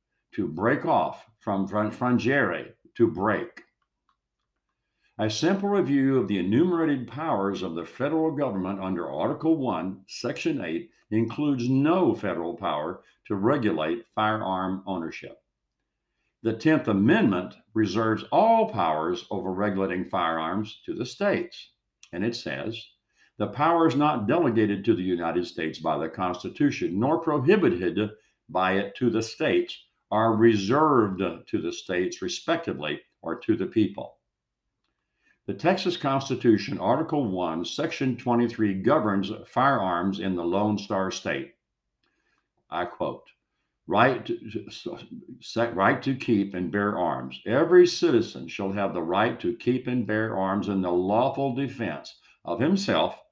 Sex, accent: male, American